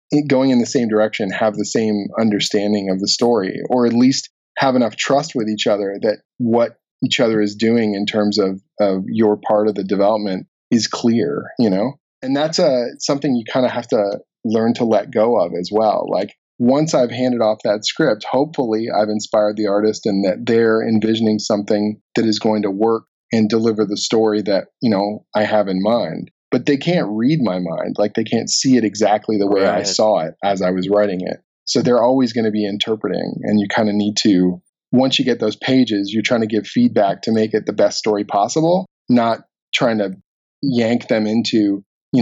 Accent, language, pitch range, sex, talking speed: American, English, 105-115 Hz, male, 210 wpm